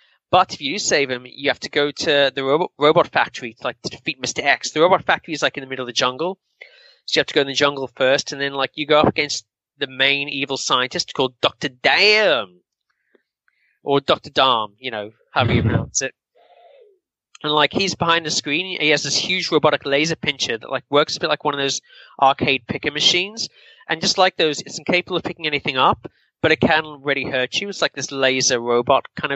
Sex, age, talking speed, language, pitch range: male, 20-39, 225 wpm, English, 130-160 Hz